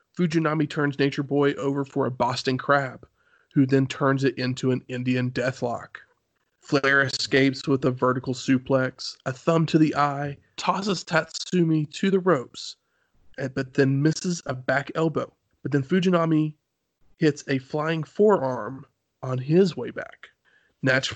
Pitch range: 130-155 Hz